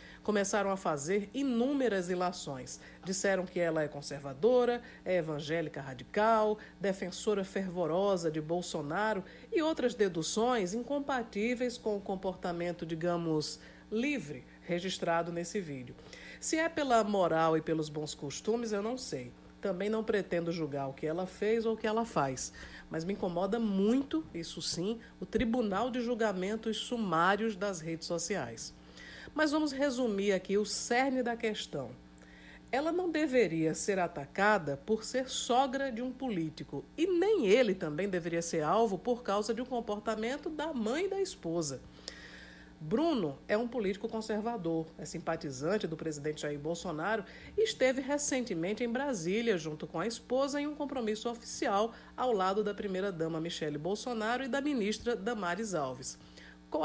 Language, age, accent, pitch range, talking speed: Portuguese, 50-69, Brazilian, 165-235 Hz, 145 wpm